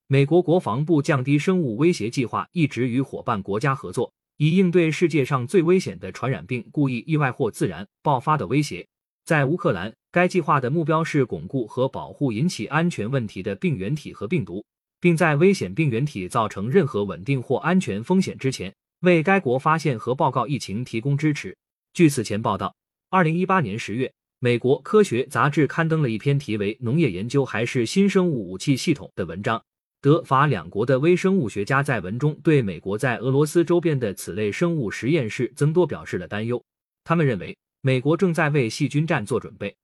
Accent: native